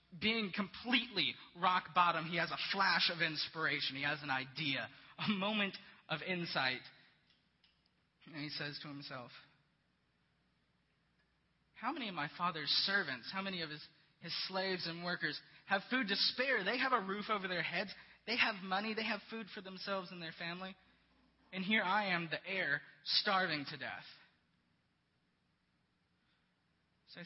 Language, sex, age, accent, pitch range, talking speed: English, male, 20-39, American, 150-195 Hz, 150 wpm